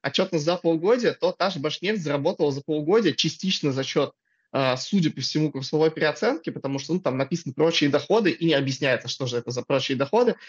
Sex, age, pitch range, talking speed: male, 20-39, 145-170 Hz, 195 wpm